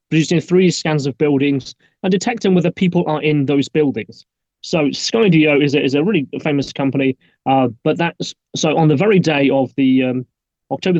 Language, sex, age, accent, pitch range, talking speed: English, male, 30-49, British, 140-175 Hz, 185 wpm